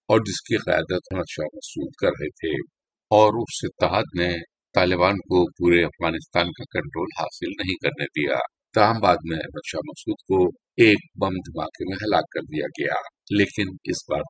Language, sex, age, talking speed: Urdu, male, 50-69, 170 wpm